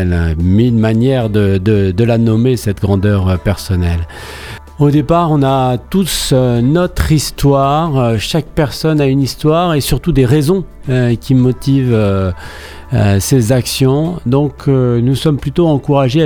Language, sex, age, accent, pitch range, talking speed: French, male, 40-59, French, 115-145 Hz, 125 wpm